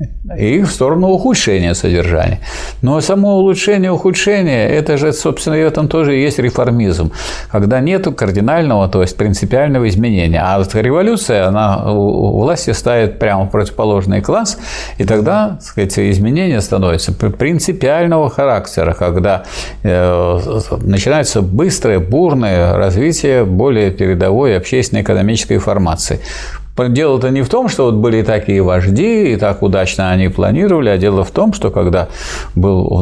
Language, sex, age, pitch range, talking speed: Russian, male, 50-69, 95-140 Hz, 140 wpm